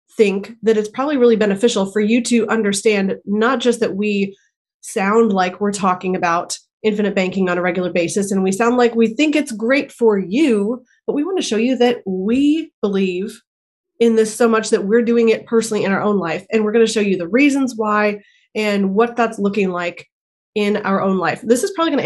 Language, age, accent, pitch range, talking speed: English, 20-39, American, 195-235 Hz, 220 wpm